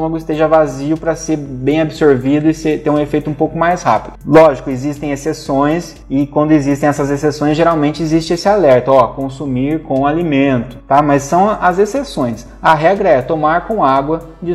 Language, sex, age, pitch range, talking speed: Portuguese, male, 20-39, 140-170 Hz, 180 wpm